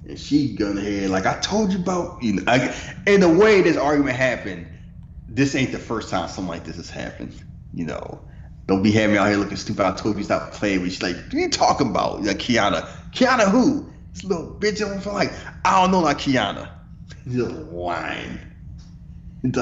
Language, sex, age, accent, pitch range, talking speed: English, male, 30-49, American, 90-150 Hz, 210 wpm